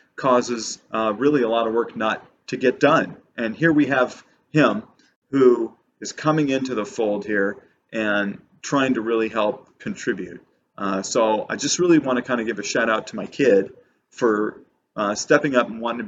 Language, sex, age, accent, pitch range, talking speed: English, male, 40-59, American, 105-125 Hz, 195 wpm